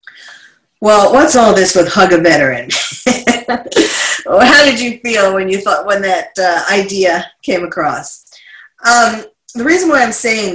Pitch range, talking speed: 150-190 Hz, 160 wpm